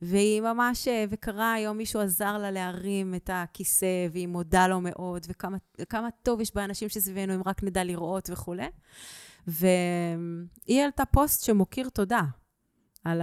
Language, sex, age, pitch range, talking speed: Hebrew, female, 30-49, 160-200 Hz, 135 wpm